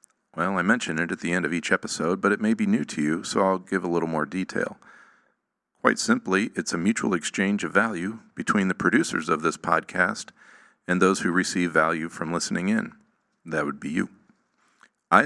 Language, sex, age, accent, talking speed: English, male, 40-59, American, 200 wpm